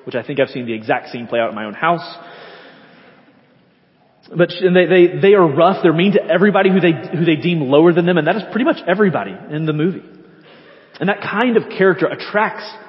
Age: 30-49